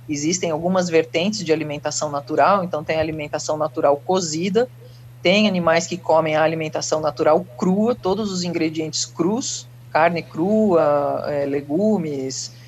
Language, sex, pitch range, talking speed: Portuguese, female, 145-185 Hz, 130 wpm